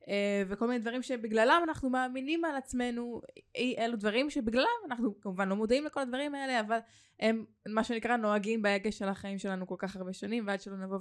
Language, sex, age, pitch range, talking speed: Hebrew, female, 20-39, 195-245 Hz, 185 wpm